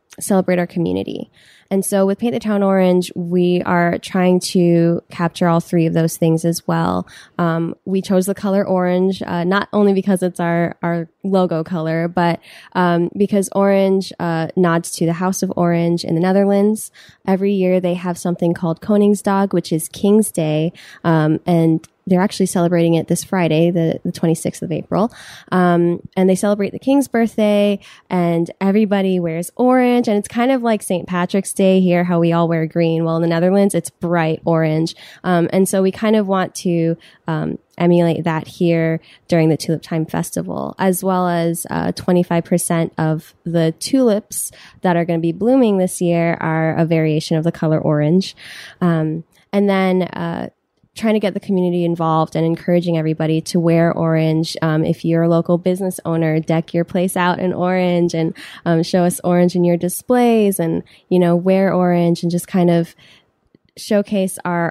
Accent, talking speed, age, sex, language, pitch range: American, 180 wpm, 10-29, female, English, 165-190 Hz